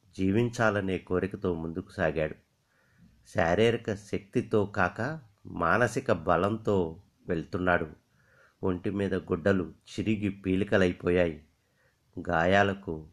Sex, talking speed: male, 70 wpm